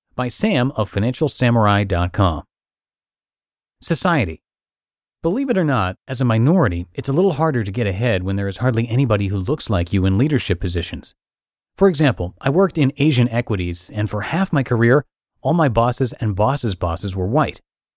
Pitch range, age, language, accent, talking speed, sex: 100-135 Hz, 30-49, English, American, 170 wpm, male